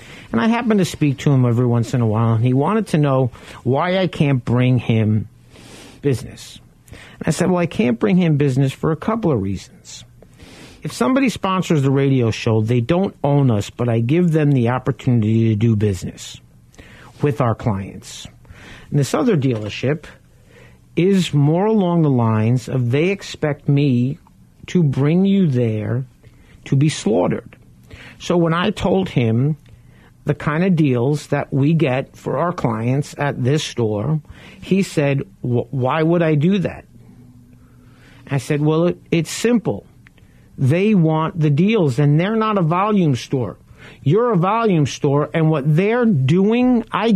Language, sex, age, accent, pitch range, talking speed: English, male, 50-69, American, 125-185 Hz, 165 wpm